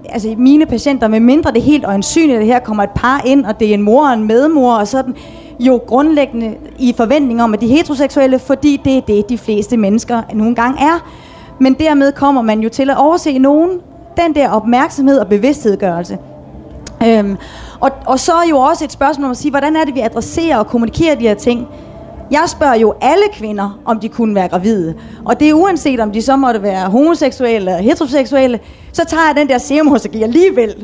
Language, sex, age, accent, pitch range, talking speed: Danish, female, 30-49, native, 225-285 Hz, 205 wpm